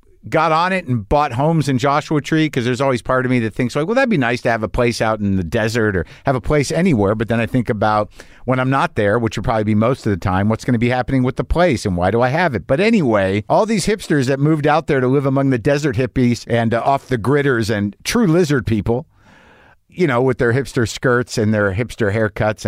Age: 50-69